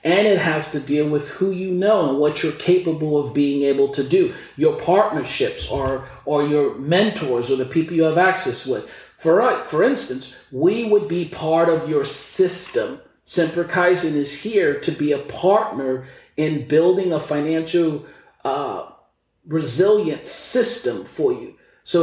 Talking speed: 160 wpm